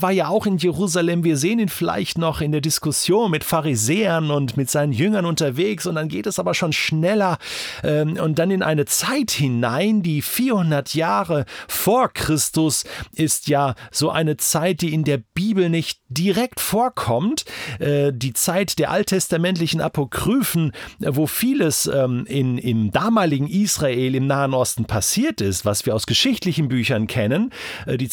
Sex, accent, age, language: male, German, 40-59, German